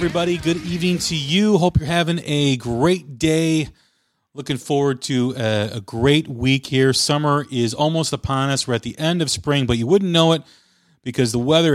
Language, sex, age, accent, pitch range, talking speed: English, male, 40-59, American, 115-150 Hz, 195 wpm